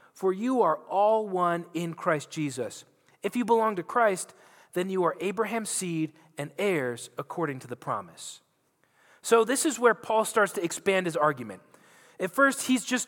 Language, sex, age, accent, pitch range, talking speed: English, male, 30-49, American, 170-220 Hz, 175 wpm